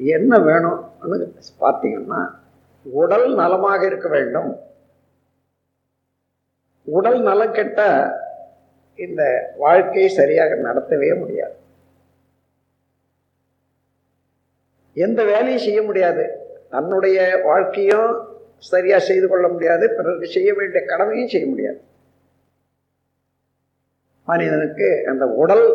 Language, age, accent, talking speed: Tamil, 50-69, native, 80 wpm